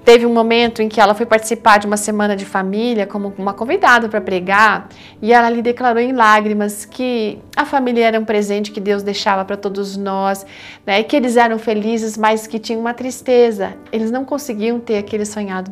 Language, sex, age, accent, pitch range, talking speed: Portuguese, female, 40-59, Brazilian, 205-255 Hz, 200 wpm